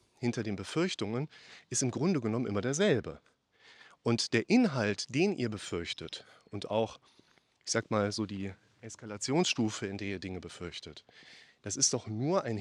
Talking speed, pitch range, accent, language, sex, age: 155 wpm, 110-145 Hz, German, German, male, 30-49